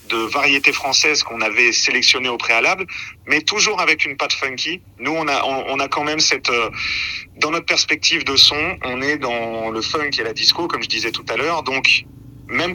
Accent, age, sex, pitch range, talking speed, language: French, 40-59, male, 115-155 Hz, 205 wpm, French